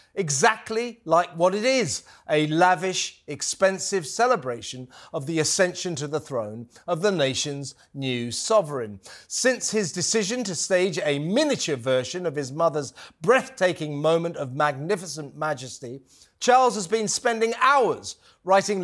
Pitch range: 150-215 Hz